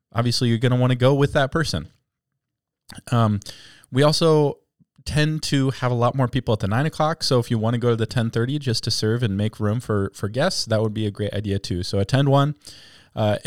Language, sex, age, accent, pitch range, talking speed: English, male, 20-39, American, 105-130 Hz, 235 wpm